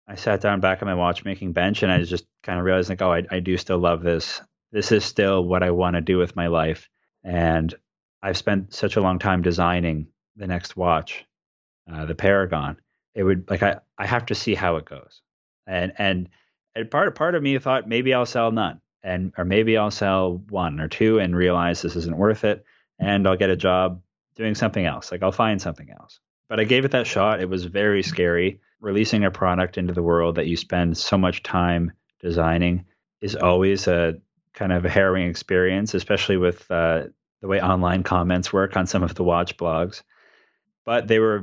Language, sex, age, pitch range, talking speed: English, male, 30-49, 85-100 Hz, 215 wpm